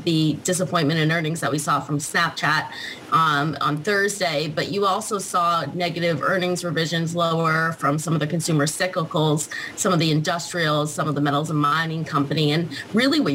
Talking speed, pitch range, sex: 180 wpm, 150-185 Hz, female